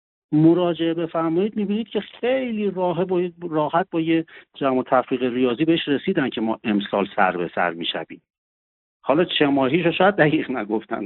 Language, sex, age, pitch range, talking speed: Persian, male, 60-79, 120-175 Hz, 150 wpm